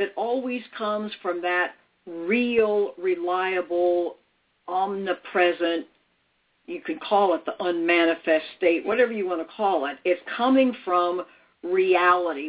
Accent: American